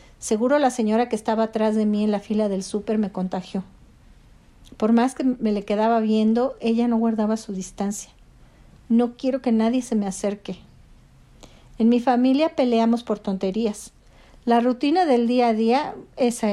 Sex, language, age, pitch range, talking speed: female, Spanish, 50-69, 205-245 Hz, 170 wpm